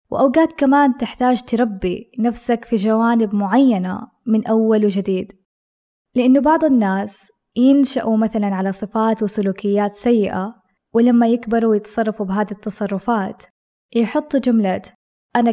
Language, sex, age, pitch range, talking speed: Arabic, female, 20-39, 205-245 Hz, 110 wpm